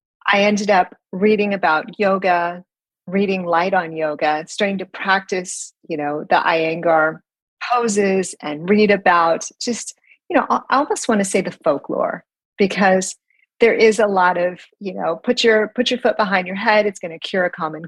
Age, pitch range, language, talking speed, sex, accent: 40-59, 160-205 Hz, English, 180 wpm, female, American